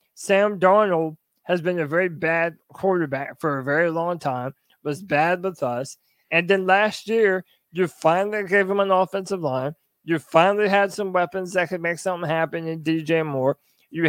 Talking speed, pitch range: 180 wpm, 150-180 Hz